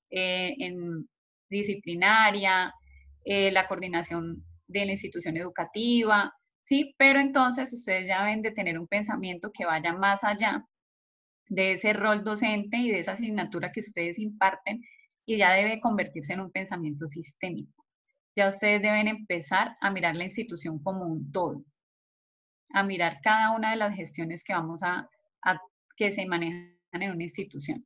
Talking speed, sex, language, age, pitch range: 155 wpm, female, Spanish, 20-39, 180-220 Hz